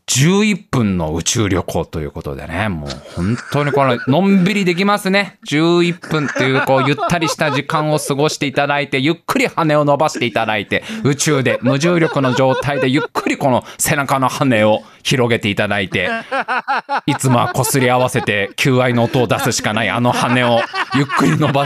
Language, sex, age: Japanese, male, 20-39